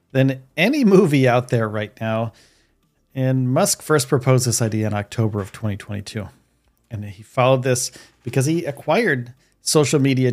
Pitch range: 120-155 Hz